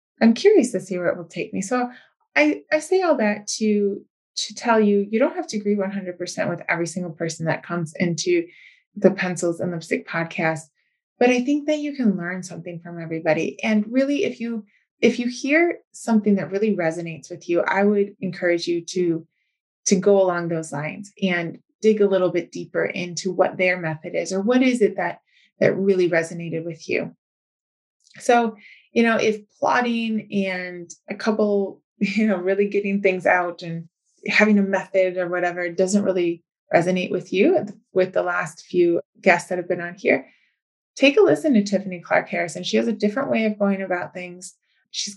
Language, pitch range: English, 180-220 Hz